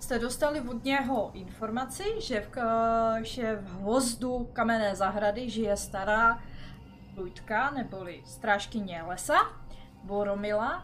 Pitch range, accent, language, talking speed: 195-250 Hz, native, Czech, 105 wpm